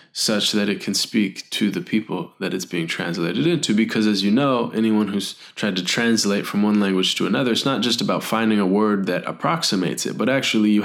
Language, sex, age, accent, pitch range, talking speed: English, male, 20-39, American, 100-120 Hz, 220 wpm